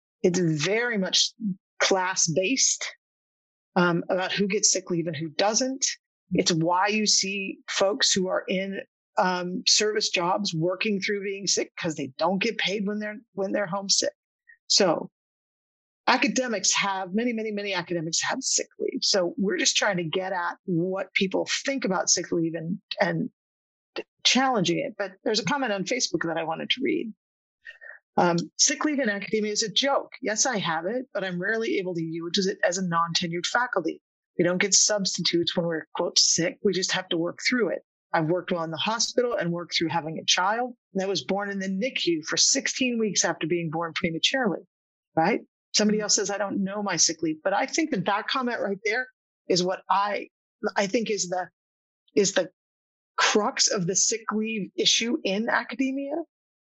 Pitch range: 180-235 Hz